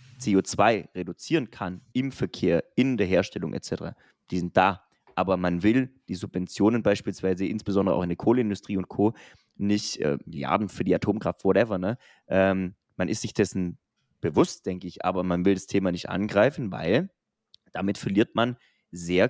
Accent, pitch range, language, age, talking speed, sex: German, 95-120 Hz, German, 20-39, 160 wpm, male